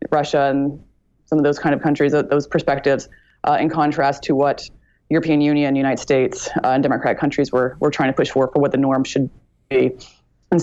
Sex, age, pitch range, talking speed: female, 20-39, 140-160 Hz, 205 wpm